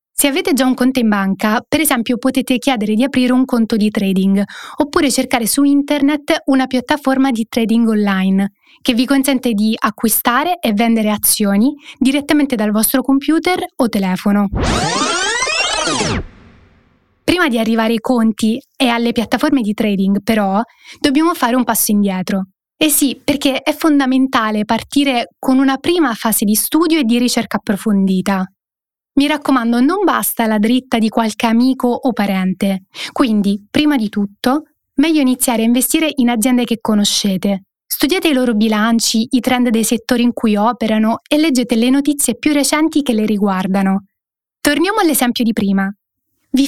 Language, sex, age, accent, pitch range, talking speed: Italian, female, 20-39, native, 220-275 Hz, 155 wpm